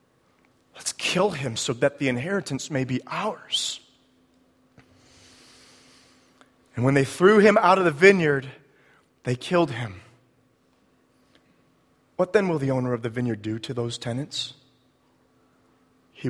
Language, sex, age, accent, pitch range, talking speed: English, male, 30-49, American, 125-205 Hz, 130 wpm